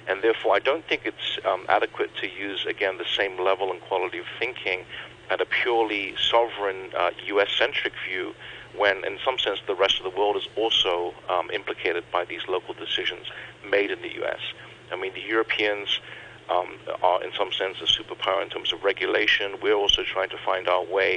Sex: male